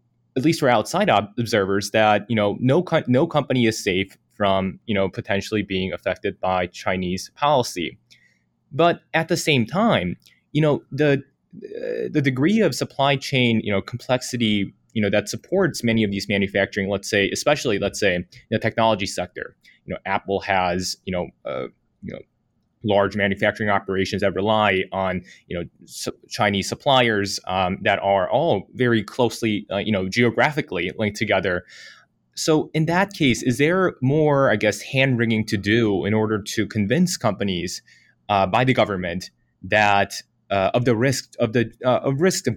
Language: English